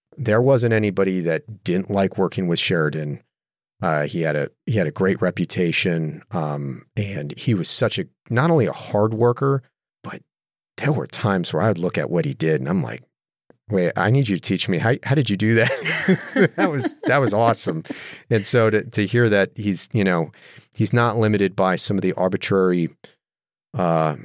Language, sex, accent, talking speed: English, male, American, 200 wpm